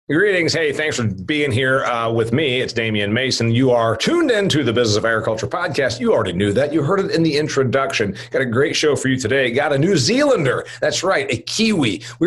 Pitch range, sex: 120-190 Hz, male